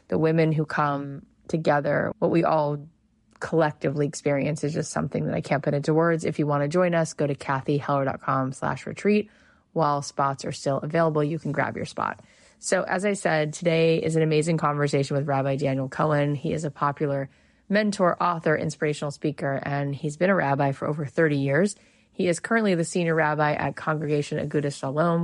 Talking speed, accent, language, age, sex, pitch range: 190 wpm, American, English, 30-49, female, 145-165 Hz